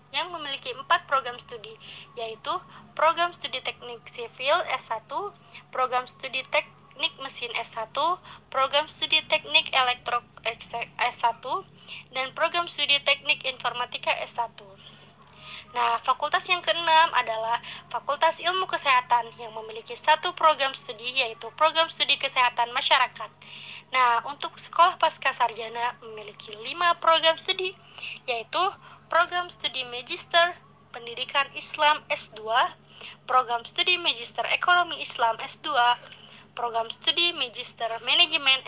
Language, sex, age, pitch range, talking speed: Indonesian, female, 20-39, 240-325 Hz, 110 wpm